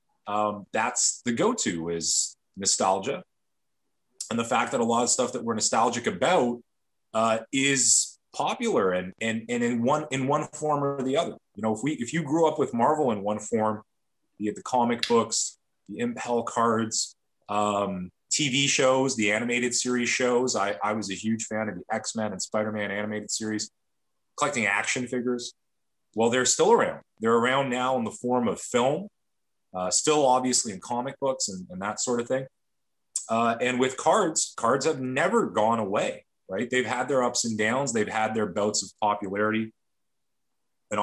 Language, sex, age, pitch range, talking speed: English, male, 30-49, 105-125 Hz, 180 wpm